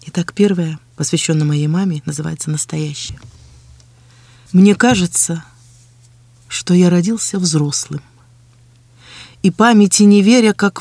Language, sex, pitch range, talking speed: Russian, female, 160-230 Hz, 100 wpm